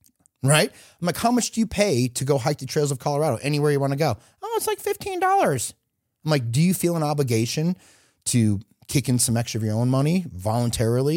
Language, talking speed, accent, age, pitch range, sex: English, 220 wpm, American, 30-49, 105-135 Hz, male